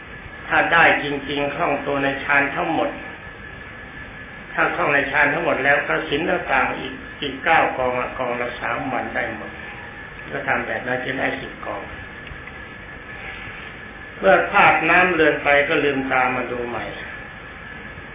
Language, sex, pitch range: Thai, male, 125-150 Hz